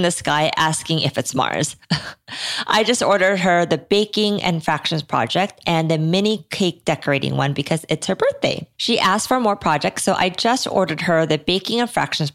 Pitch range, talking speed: 160-200 Hz, 190 wpm